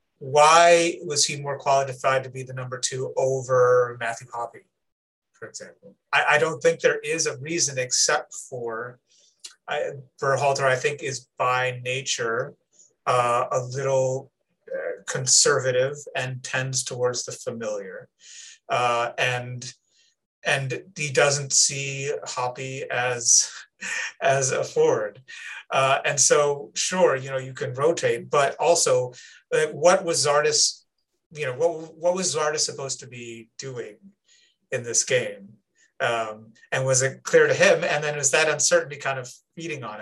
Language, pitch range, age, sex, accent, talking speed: English, 130-170 Hz, 30-49, male, American, 145 wpm